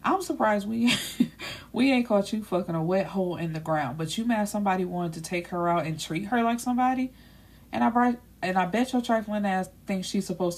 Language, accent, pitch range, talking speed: English, American, 165-215 Hz, 225 wpm